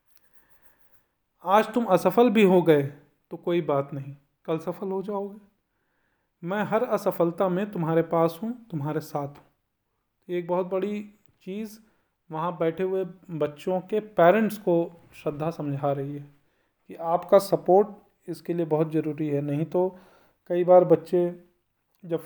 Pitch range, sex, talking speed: 155-195 Hz, male, 145 wpm